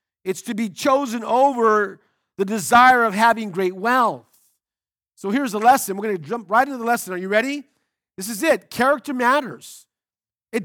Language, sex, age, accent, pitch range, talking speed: English, male, 50-69, American, 190-245 Hz, 180 wpm